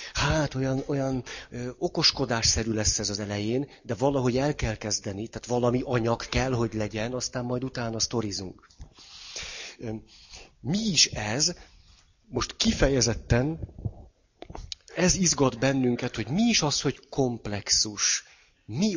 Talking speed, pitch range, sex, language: 125 wpm, 110-140 Hz, male, Hungarian